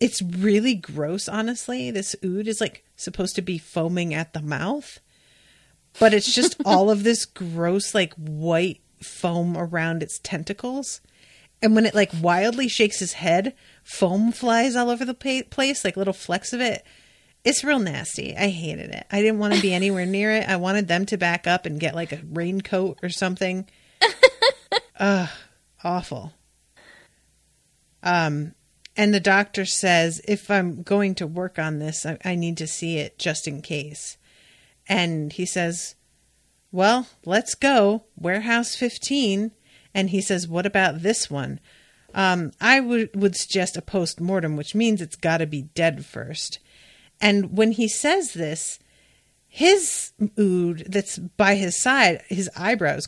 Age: 30-49